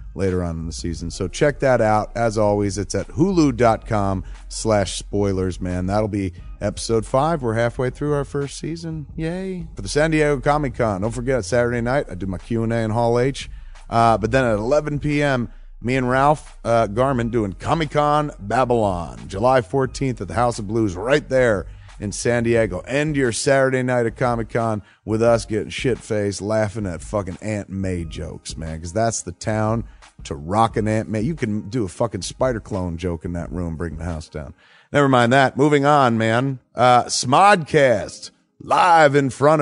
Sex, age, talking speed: male, 30-49, 185 wpm